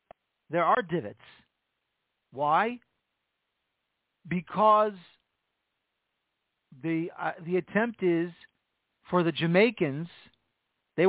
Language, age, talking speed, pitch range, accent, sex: English, 40-59, 75 wpm, 150-190 Hz, American, male